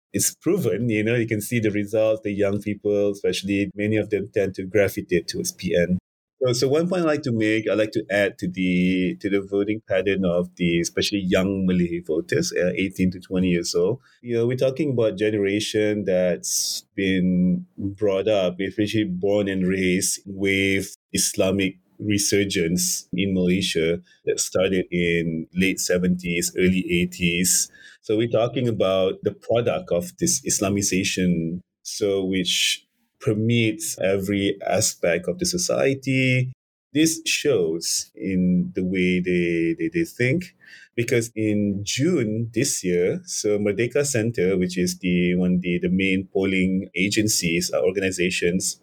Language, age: English, 30-49